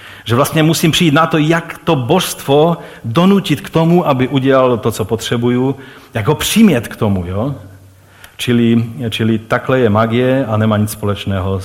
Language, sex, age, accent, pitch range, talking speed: Czech, male, 40-59, native, 110-150 Hz, 160 wpm